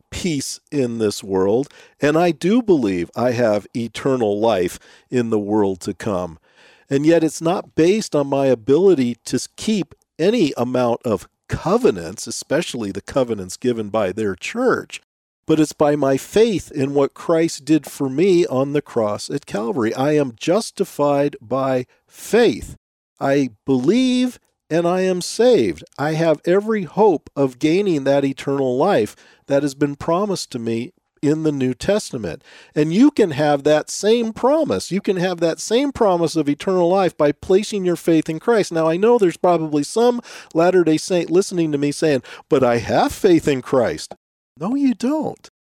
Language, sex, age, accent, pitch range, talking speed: English, male, 50-69, American, 130-185 Hz, 165 wpm